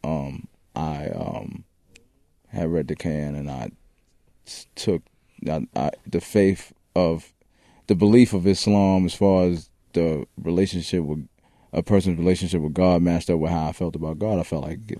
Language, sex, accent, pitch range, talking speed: English, male, American, 80-105 Hz, 155 wpm